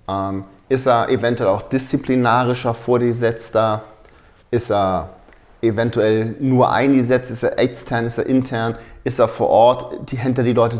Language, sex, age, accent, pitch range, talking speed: German, male, 30-49, German, 110-130 Hz, 145 wpm